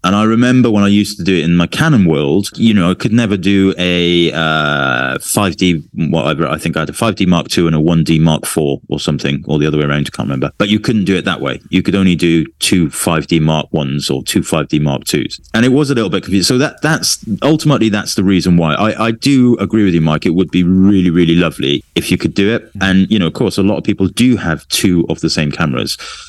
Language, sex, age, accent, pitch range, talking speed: English, male, 30-49, British, 80-95 Hz, 265 wpm